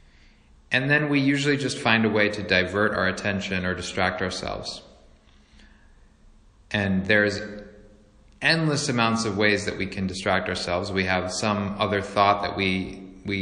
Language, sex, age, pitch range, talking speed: English, male, 30-49, 90-105 Hz, 150 wpm